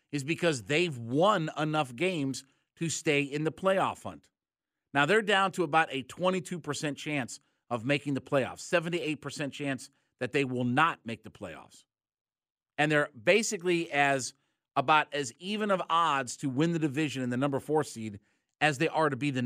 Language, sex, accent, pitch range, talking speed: English, male, American, 135-175 Hz, 175 wpm